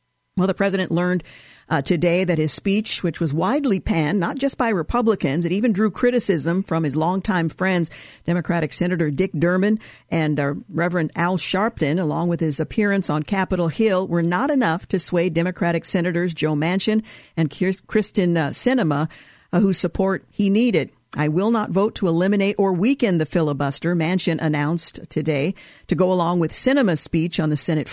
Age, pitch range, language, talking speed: 50-69, 160-200 Hz, English, 175 wpm